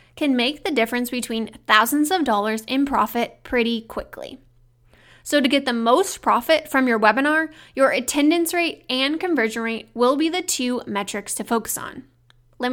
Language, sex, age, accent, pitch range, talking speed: English, female, 20-39, American, 225-290 Hz, 170 wpm